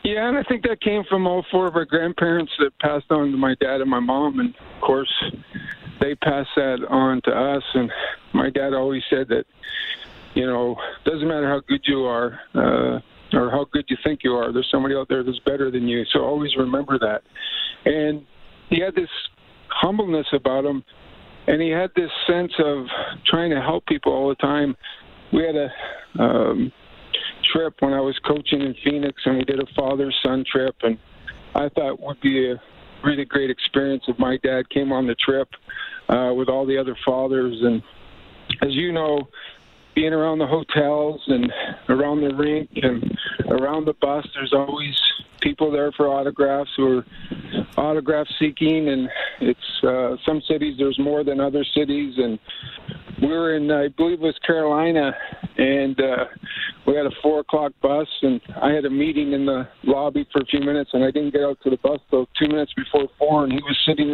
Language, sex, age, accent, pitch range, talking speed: English, male, 50-69, American, 135-155 Hz, 195 wpm